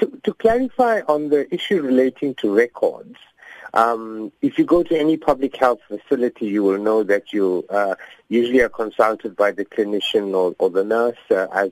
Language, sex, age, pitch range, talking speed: English, male, 50-69, 105-140 Hz, 185 wpm